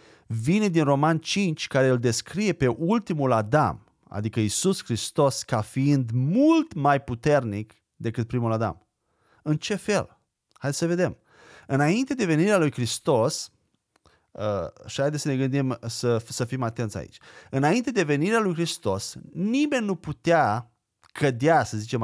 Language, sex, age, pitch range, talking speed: Romanian, male, 30-49, 115-170 Hz, 145 wpm